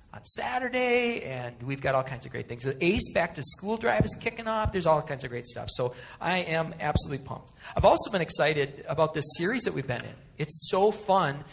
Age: 40-59